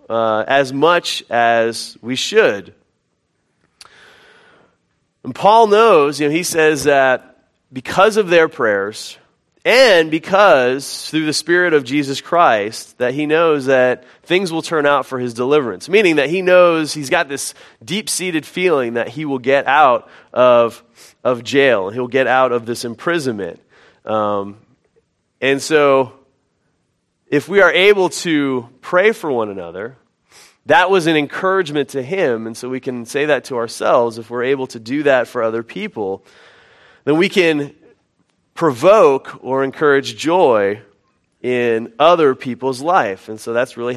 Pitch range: 125-170 Hz